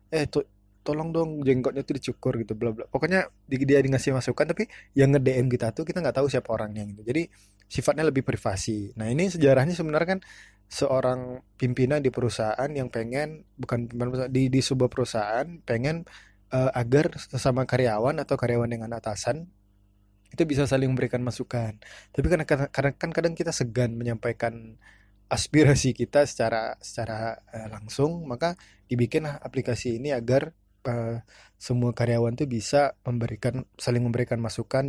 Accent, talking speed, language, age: native, 150 wpm, Indonesian, 20-39